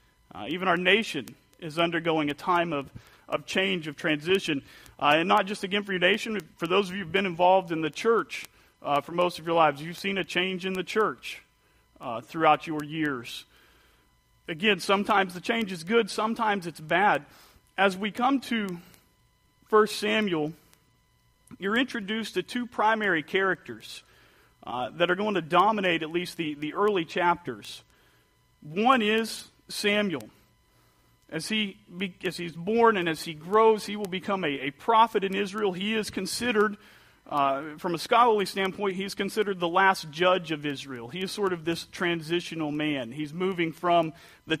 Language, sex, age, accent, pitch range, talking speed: English, male, 40-59, American, 160-200 Hz, 170 wpm